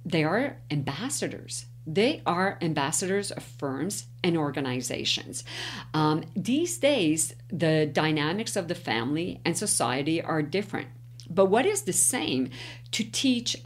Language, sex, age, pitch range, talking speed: English, female, 50-69, 130-195 Hz, 125 wpm